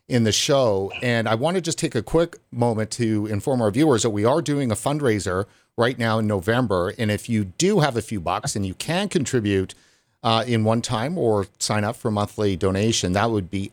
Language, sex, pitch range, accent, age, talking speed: English, male, 110-140 Hz, American, 50-69, 225 wpm